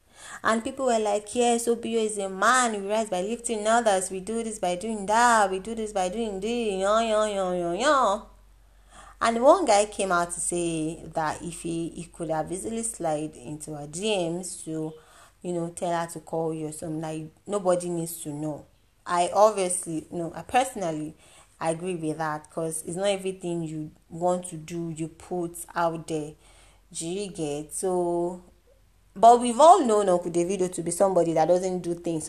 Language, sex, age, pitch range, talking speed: English, female, 20-39, 165-200 Hz, 180 wpm